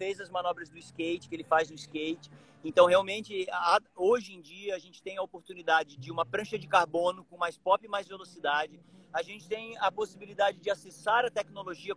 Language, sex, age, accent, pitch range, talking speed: Portuguese, male, 40-59, Brazilian, 175-220 Hz, 200 wpm